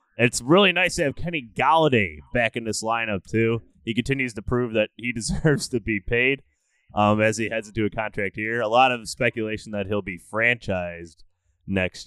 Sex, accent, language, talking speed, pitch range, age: male, American, English, 195 wpm, 95-125 Hz, 20-39